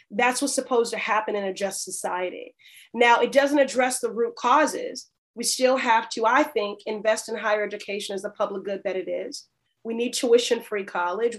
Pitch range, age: 210-250 Hz, 30-49